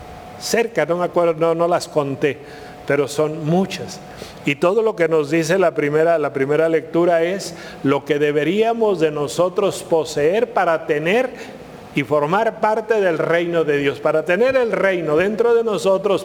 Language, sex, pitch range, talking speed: Spanish, male, 140-170 Hz, 170 wpm